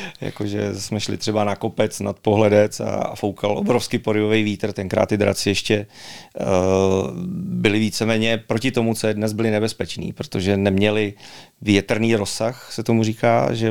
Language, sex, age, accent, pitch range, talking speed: Czech, male, 30-49, native, 105-115 Hz, 150 wpm